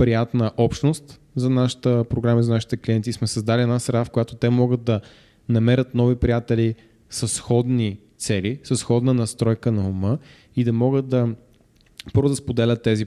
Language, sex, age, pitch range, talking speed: Bulgarian, male, 20-39, 110-130 Hz, 155 wpm